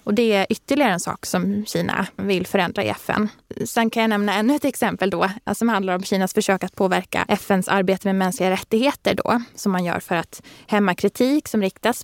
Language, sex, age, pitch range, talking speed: Swedish, female, 20-39, 185-225 Hz, 210 wpm